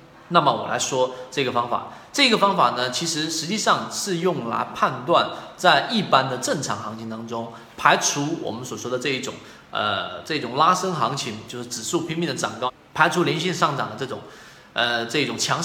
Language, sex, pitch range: Chinese, male, 125-180 Hz